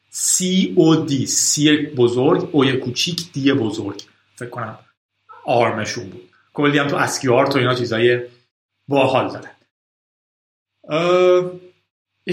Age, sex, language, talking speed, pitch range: 30-49, male, Persian, 100 wpm, 125-180 Hz